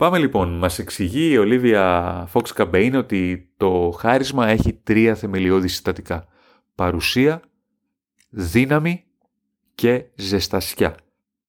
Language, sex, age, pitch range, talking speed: Greek, male, 30-49, 95-120 Hz, 95 wpm